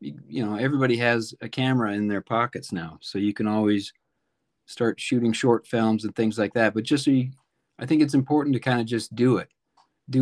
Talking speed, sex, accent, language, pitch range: 205 wpm, male, American, English, 105-120 Hz